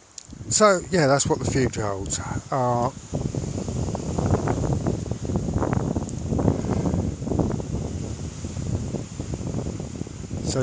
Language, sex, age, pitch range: English, male, 60-79, 115-150 Hz